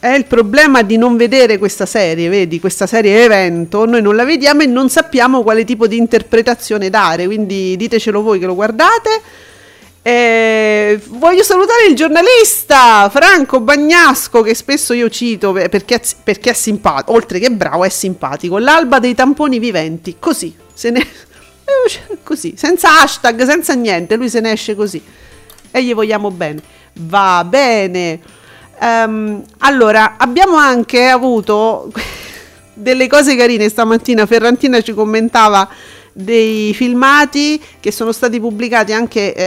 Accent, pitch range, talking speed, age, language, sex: native, 205-265 Hz, 135 wpm, 40-59, Italian, female